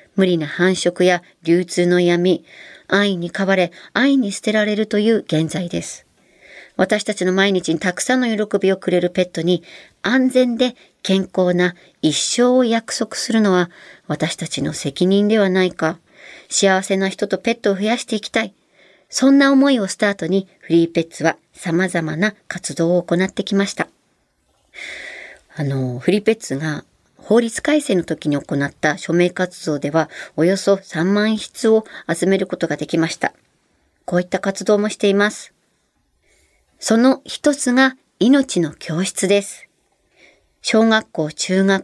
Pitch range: 170-215 Hz